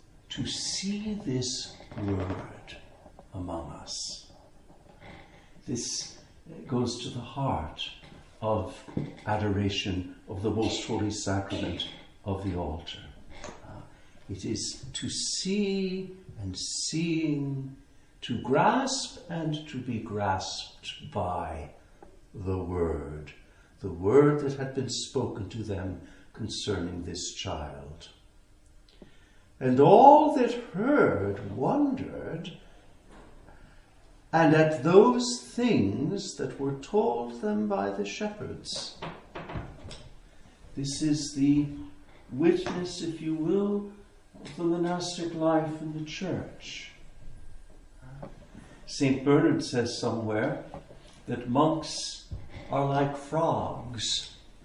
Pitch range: 100-155 Hz